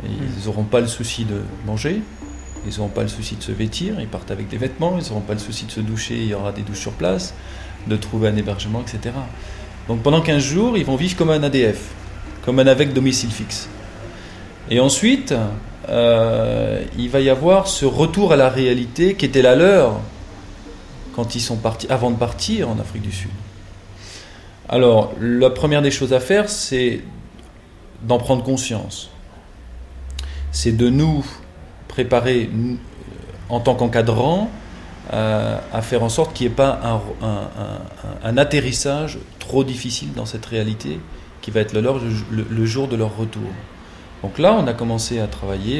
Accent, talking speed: French, 175 wpm